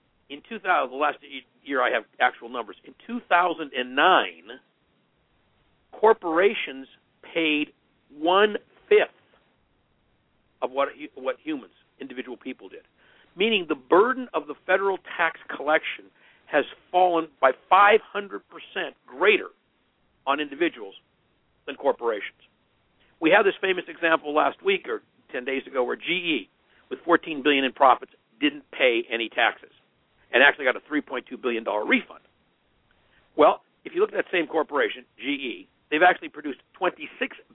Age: 50-69